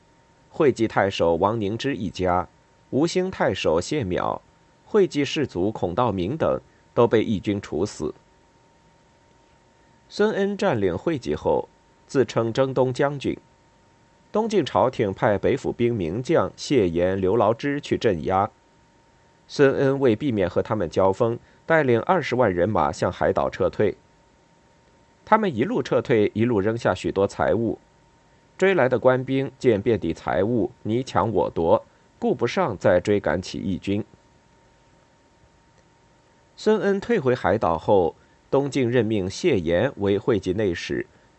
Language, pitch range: Chinese, 100-150 Hz